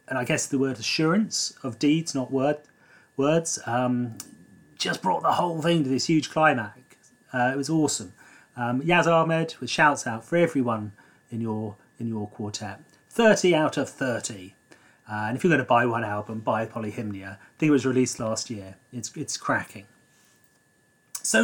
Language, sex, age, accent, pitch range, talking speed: English, male, 30-49, British, 110-145 Hz, 180 wpm